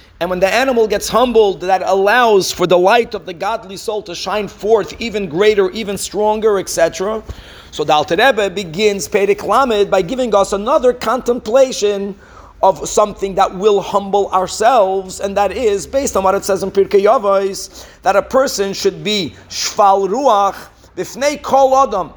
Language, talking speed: English, 160 wpm